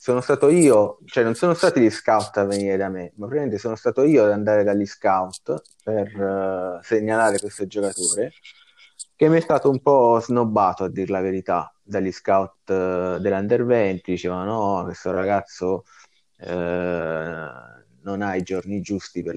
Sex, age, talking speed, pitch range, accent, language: male, 20-39, 160 wpm, 95-115 Hz, native, Italian